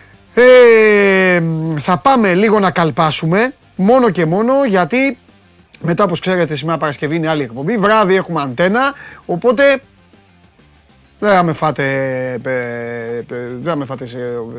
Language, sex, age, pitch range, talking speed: Greek, male, 30-49, 130-205 Hz, 95 wpm